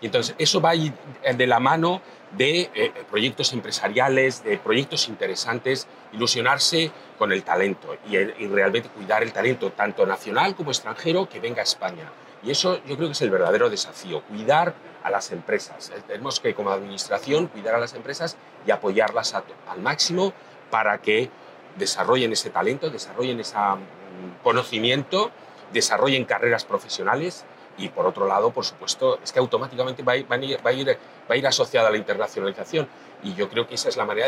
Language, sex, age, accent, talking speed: Spanish, male, 40-59, Spanish, 165 wpm